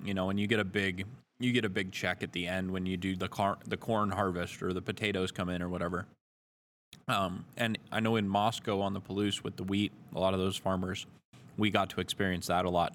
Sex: male